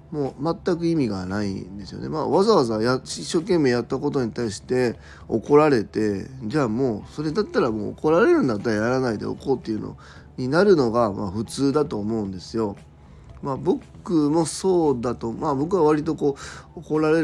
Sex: male